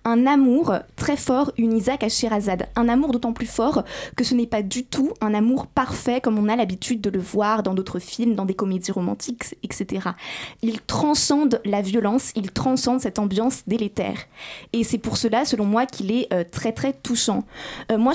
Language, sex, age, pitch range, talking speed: French, female, 20-39, 215-250 Hz, 200 wpm